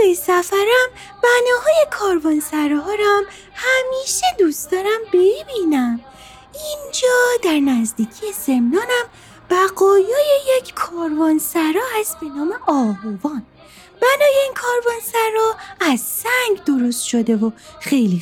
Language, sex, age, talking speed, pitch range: Persian, female, 30-49, 100 wpm, 305-430 Hz